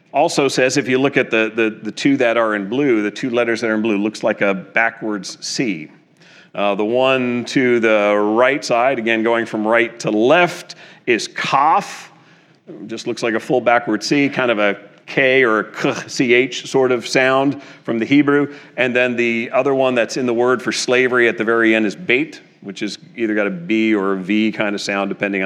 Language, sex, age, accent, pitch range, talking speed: English, male, 40-59, American, 115-155 Hz, 210 wpm